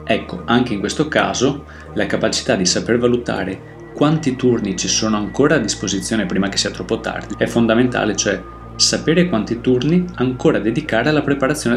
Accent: native